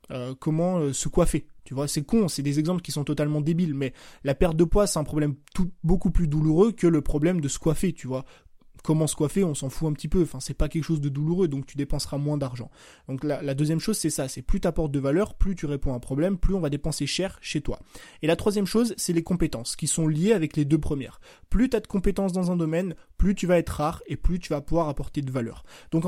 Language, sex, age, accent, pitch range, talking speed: French, male, 20-39, French, 145-185 Hz, 270 wpm